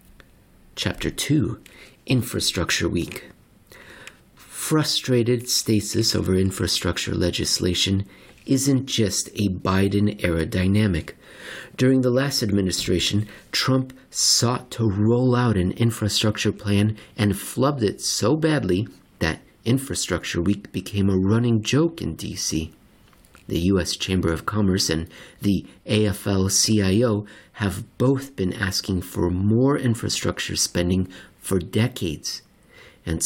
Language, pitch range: English, 90-115 Hz